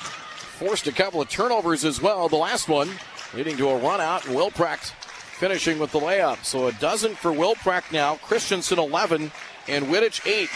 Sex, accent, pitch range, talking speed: male, American, 140-175 Hz, 175 wpm